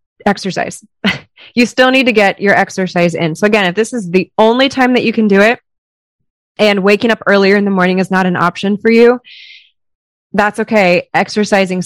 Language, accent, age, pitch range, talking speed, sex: English, American, 20-39, 180-220 Hz, 190 wpm, female